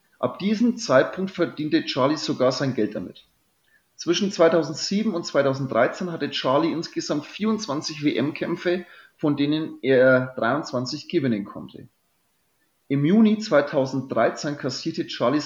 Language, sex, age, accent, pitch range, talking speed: German, male, 30-49, German, 135-165 Hz, 115 wpm